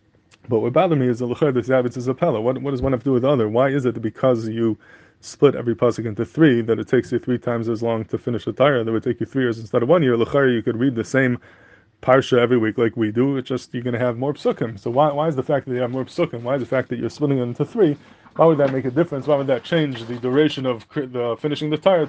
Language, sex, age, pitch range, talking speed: English, male, 20-39, 120-145 Hz, 295 wpm